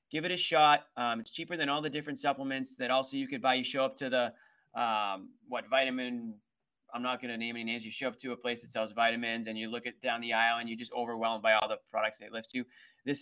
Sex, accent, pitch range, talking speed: male, American, 120-155 Hz, 270 wpm